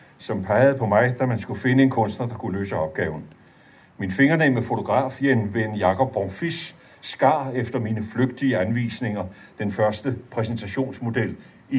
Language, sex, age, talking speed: Danish, male, 60-79, 155 wpm